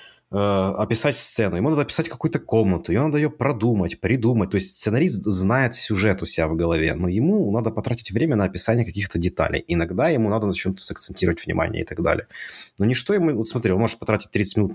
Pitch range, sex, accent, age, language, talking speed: 95-125 Hz, male, native, 30-49, Ukrainian, 210 wpm